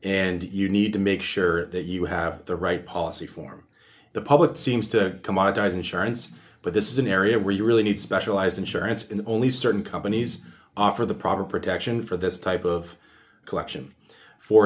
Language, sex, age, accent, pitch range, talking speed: English, male, 30-49, American, 90-110 Hz, 180 wpm